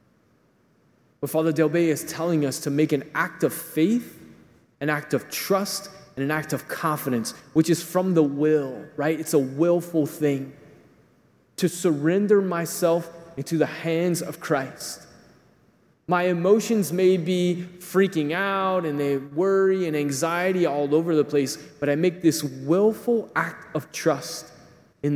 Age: 20-39